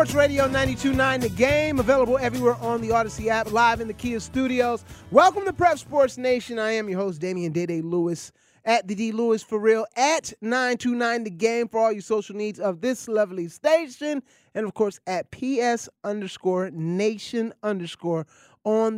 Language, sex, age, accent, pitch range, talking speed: English, male, 20-39, American, 170-235 Hz, 175 wpm